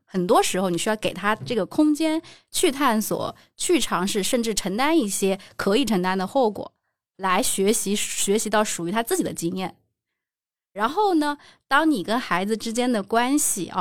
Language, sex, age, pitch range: Chinese, female, 20-39, 190-265 Hz